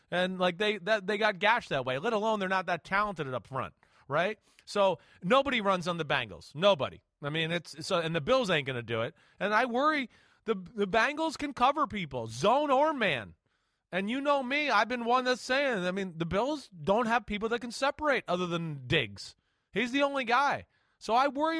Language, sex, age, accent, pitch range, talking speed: English, male, 30-49, American, 160-225 Hz, 215 wpm